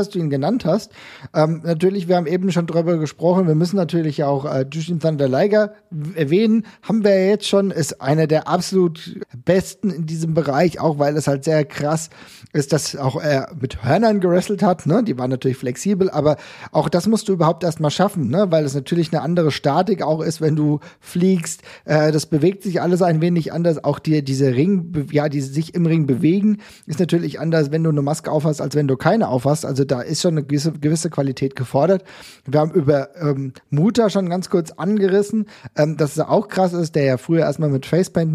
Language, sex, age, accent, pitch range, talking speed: German, male, 40-59, German, 150-185 Hz, 215 wpm